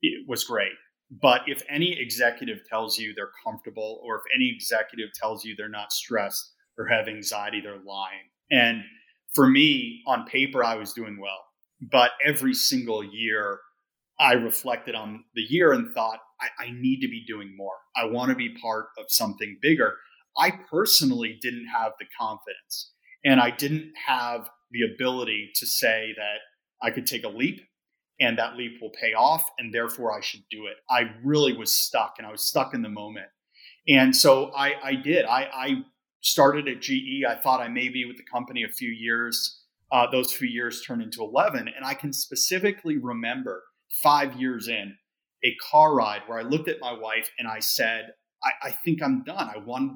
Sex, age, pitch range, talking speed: male, 30-49, 110-155 Hz, 190 wpm